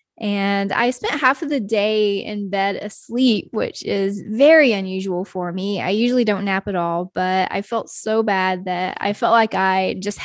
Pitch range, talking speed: 190-230 Hz, 195 wpm